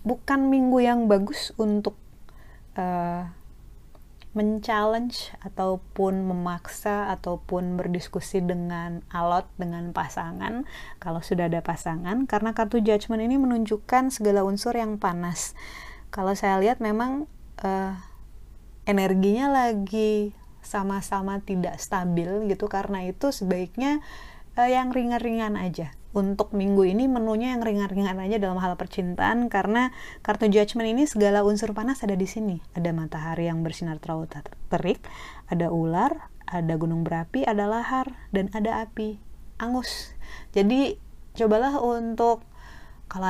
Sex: female